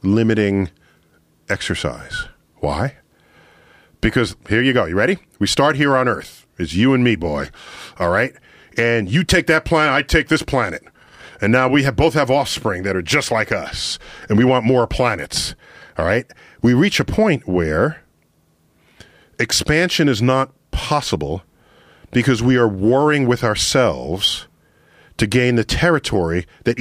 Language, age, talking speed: English, 40-59, 155 wpm